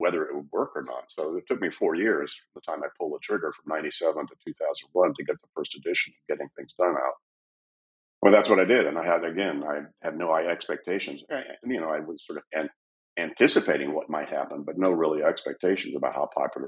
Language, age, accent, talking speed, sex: English, 50-69, American, 240 wpm, male